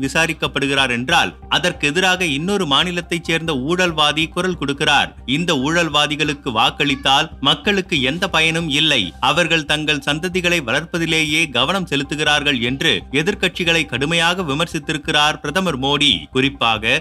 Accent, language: native, Tamil